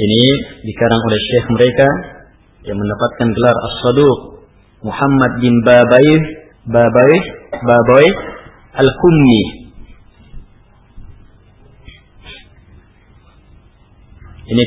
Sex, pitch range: male, 100-135 Hz